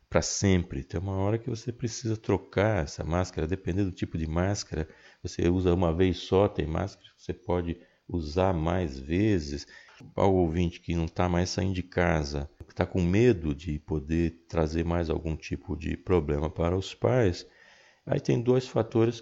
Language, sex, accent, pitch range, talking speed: Portuguese, male, Brazilian, 85-115 Hz, 180 wpm